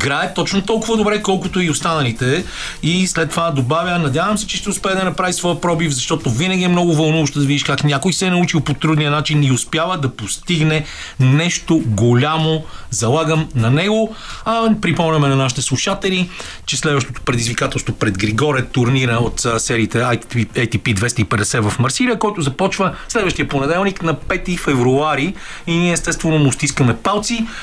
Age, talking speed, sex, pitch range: 40-59, 160 wpm, male, 130-175 Hz